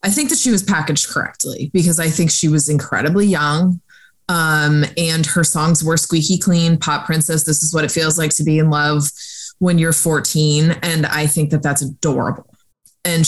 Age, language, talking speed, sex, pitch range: 20-39, English, 195 wpm, female, 150-180 Hz